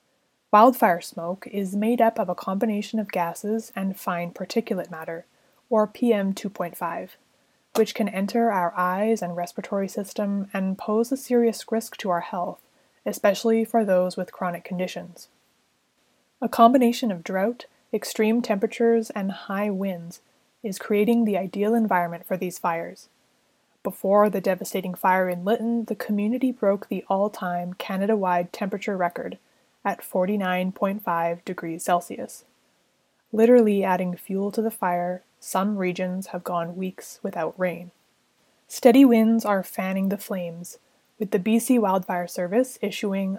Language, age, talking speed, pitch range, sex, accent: English, 20-39, 135 wpm, 180-225 Hz, female, American